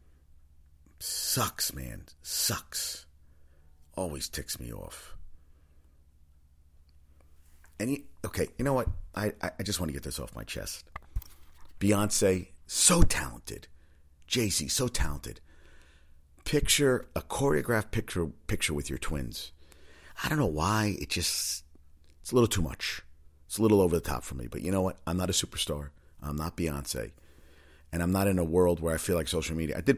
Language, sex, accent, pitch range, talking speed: English, male, American, 75-95 Hz, 165 wpm